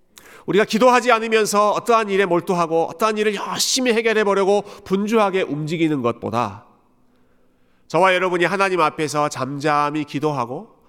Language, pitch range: Korean, 130-195 Hz